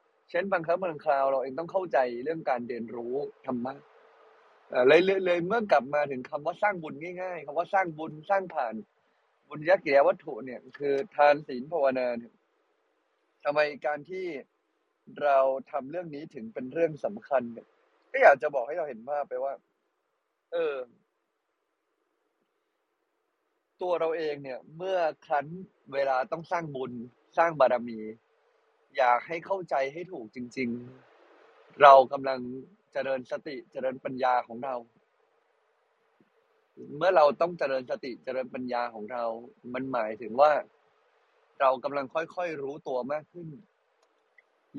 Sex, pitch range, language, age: male, 130-185 Hz, Thai, 20-39